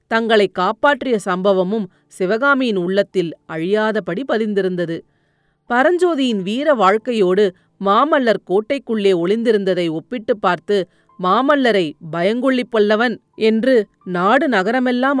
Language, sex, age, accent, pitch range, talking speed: Tamil, female, 30-49, native, 185-245 Hz, 85 wpm